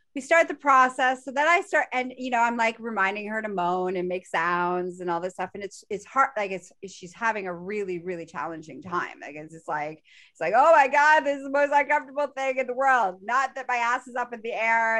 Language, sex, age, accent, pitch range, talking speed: English, female, 30-49, American, 190-260 Hz, 260 wpm